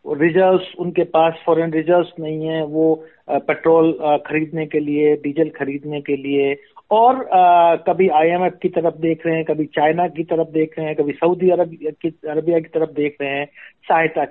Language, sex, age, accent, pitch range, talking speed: Hindi, male, 50-69, native, 160-230 Hz, 175 wpm